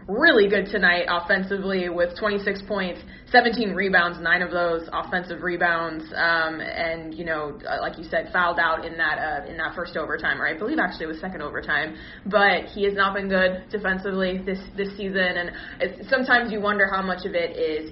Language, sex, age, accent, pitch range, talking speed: English, female, 20-39, American, 175-210 Hz, 195 wpm